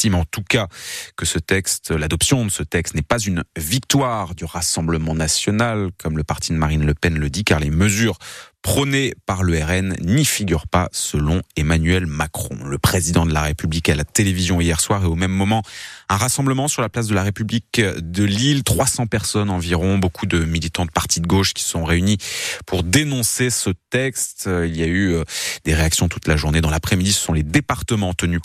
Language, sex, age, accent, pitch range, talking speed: French, male, 30-49, French, 85-110 Hz, 195 wpm